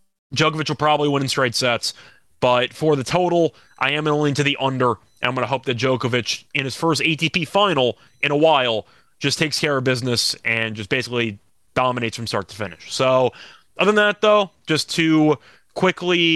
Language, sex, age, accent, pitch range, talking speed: English, male, 20-39, American, 125-155 Hz, 195 wpm